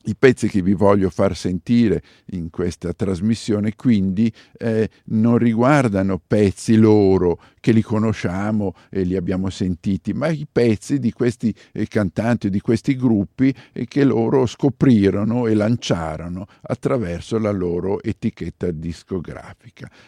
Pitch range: 95-120 Hz